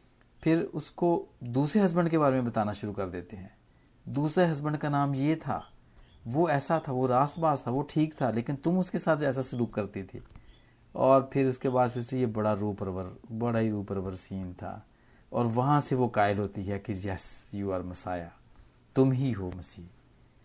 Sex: male